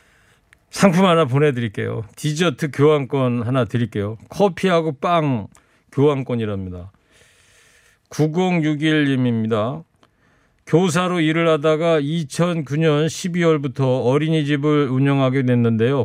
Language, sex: Korean, male